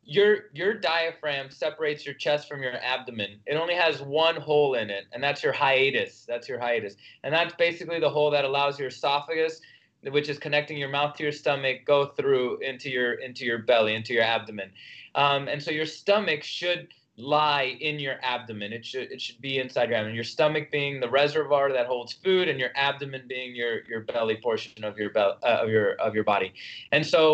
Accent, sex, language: American, male, English